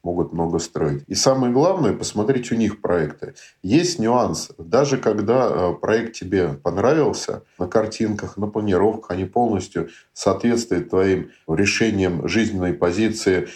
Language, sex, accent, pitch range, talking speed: Russian, male, native, 95-120 Hz, 125 wpm